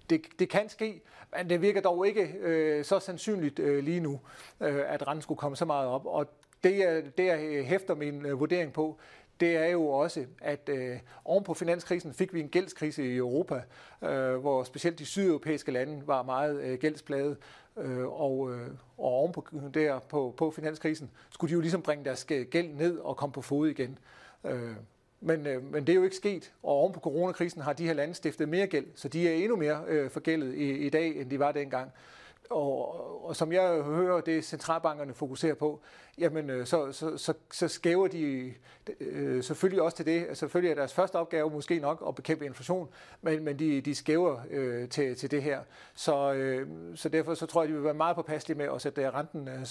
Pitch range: 140-165 Hz